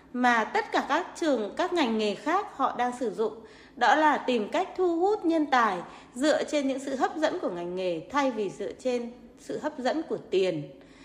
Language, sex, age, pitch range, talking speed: Vietnamese, female, 20-39, 215-315 Hz, 210 wpm